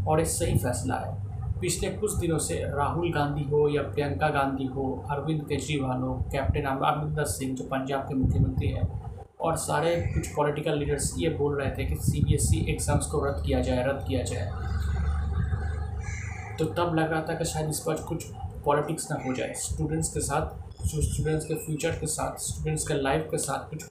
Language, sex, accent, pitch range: Hindi, male, native, 100-150 Hz